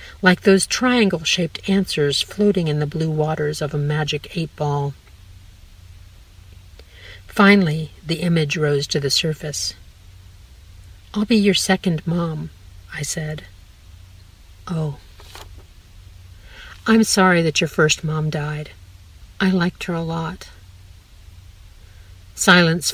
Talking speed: 105 wpm